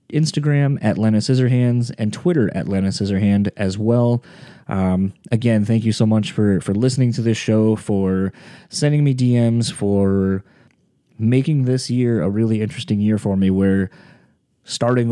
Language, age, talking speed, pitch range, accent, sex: English, 20-39, 155 wpm, 105-130 Hz, American, male